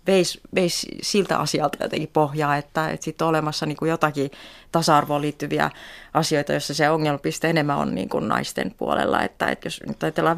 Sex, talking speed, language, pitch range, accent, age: female, 170 wpm, Finnish, 140-165 Hz, native, 30-49